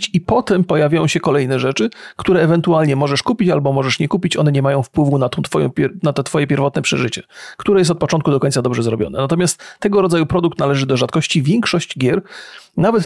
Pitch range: 140-185 Hz